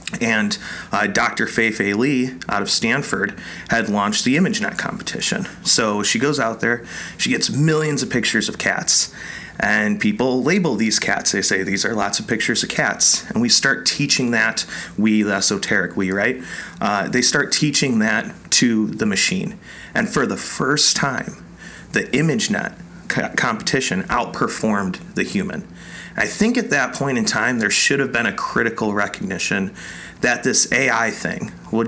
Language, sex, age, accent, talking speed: English, male, 30-49, American, 165 wpm